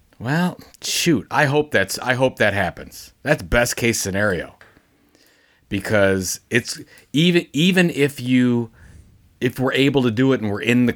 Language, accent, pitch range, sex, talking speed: English, American, 95-120 Hz, male, 160 wpm